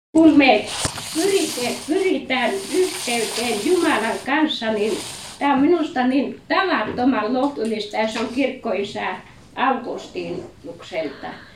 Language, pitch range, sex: Finnish, 230-320 Hz, female